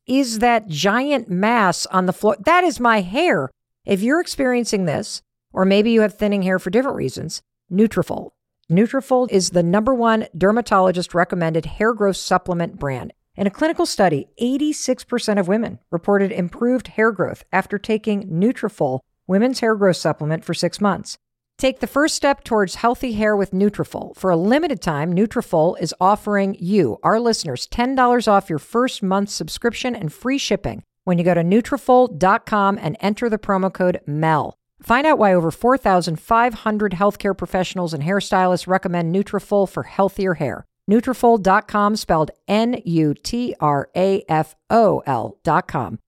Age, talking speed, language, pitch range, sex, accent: 50-69, 145 wpm, English, 175-230 Hz, female, American